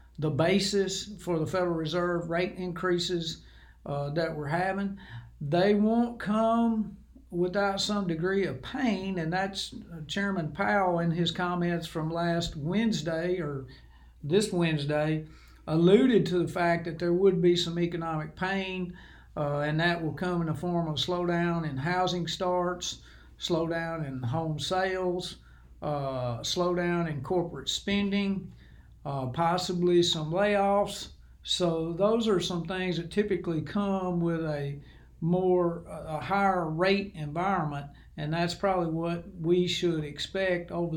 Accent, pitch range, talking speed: American, 160-185 Hz, 135 wpm